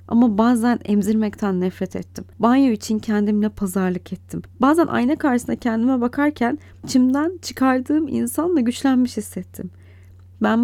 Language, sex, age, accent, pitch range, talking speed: Turkish, female, 30-49, native, 185-250 Hz, 120 wpm